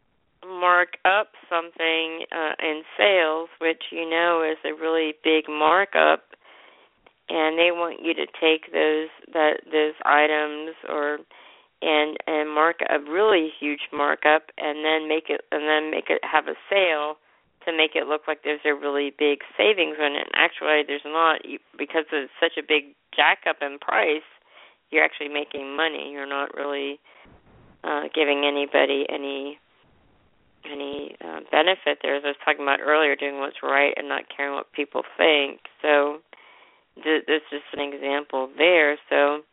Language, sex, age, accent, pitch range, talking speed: English, female, 50-69, American, 145-160 Hz, 160 wpm